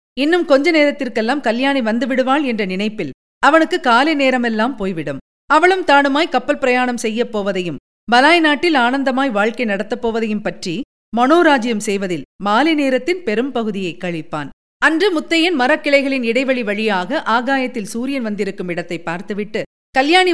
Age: 50-69